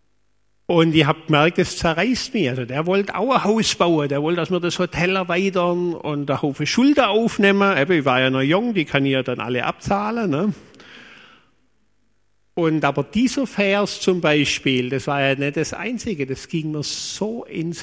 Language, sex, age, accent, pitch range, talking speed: German, male, 50-69, German, 135-185 Hz, 190 wpm